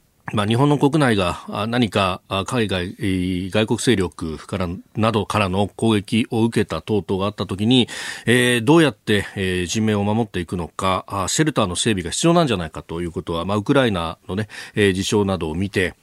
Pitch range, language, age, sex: 90-130 Hz, Japanese, 40-59, male